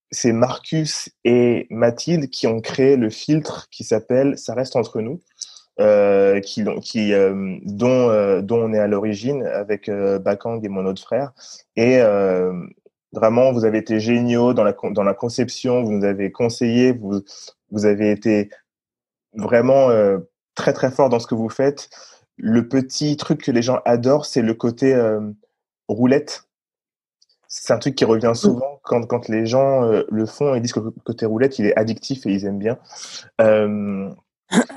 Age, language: 20-39, French